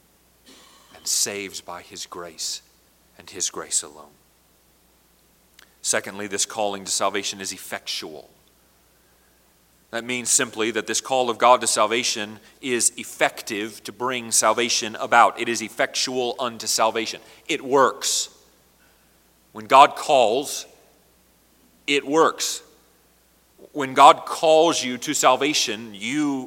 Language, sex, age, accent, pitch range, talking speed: English, male, 40-59, American, 120-150 Hz, 115 wpm